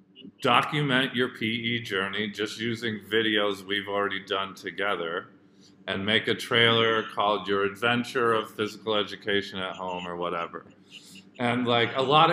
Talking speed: 140 wpm